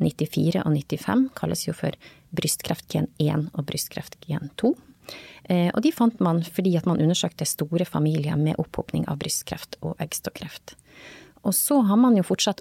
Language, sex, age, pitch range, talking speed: English, female, 30-49, 160-200 Hz, 150 wpm